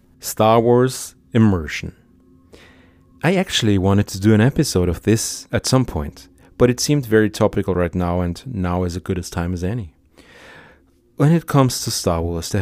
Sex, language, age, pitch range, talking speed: male, English, 40-59, 85-110 Hz, 190 wpm